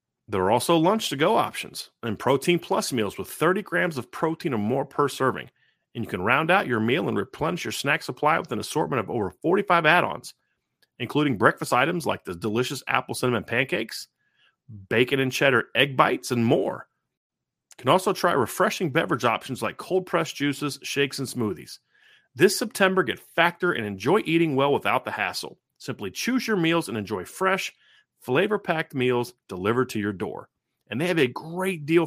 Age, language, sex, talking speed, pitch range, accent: 40-59, English, male, 185 wpm, 130-185 Hz, American